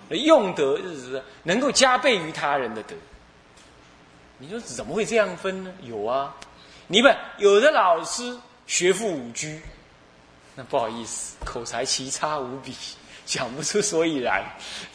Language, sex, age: Chinese, male, 30-49